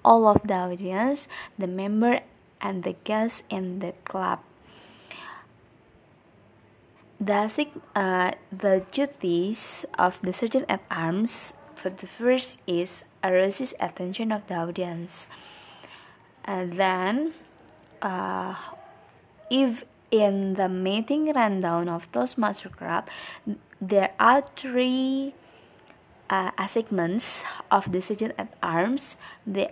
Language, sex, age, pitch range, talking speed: Indonesian, female, 20-39, 185-250 Hz, 105 wpm